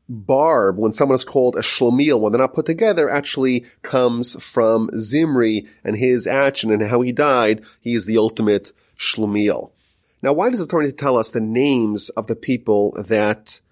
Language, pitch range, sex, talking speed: English, 110-145 Hz, male, 190 wpm